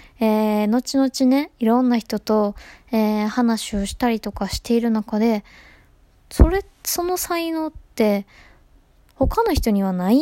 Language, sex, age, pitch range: Japanese, female, 20-39, 200-285 Hz